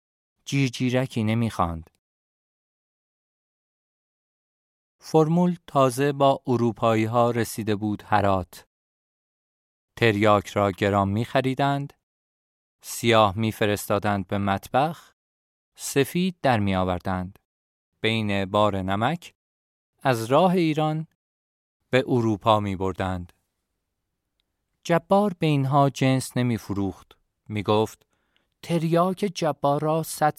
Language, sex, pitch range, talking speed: Persian, male, 100-140 Hz, 85 wpm